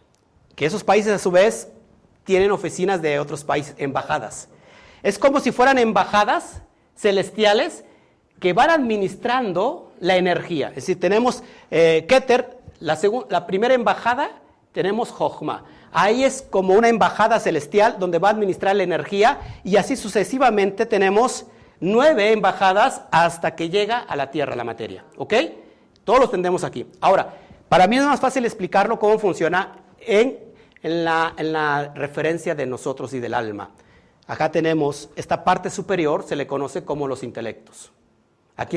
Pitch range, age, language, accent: 155-220 Hz, 50-69, Spanish, Mexican